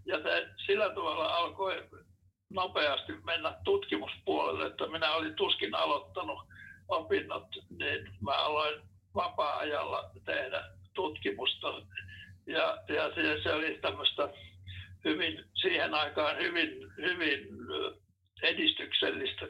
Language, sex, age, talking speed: Finnish, male, 60-79, 90 wpm